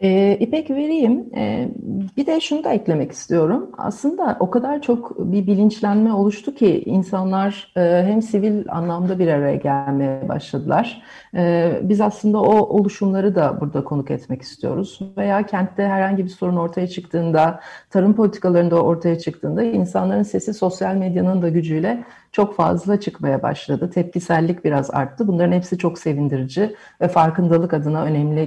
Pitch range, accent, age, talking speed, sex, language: 165-210 Hz, native, 40-59, 135 wpm, female, Turkish